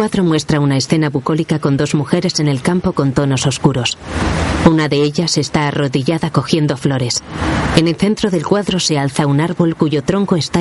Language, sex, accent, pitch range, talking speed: Spanish, female, Spanish, 145-175 Hz, 190 wpm